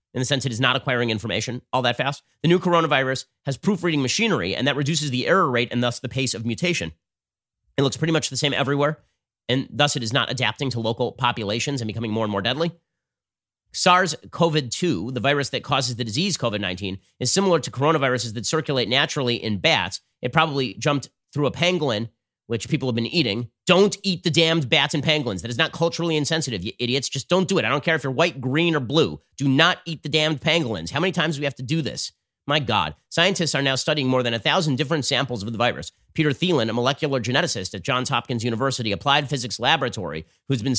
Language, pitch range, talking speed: English, 120-160 Hz, 220 wpm